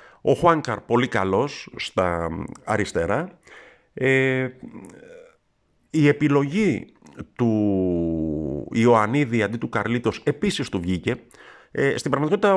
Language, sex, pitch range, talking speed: Greek, male, 105-145 Hz, 95 wpm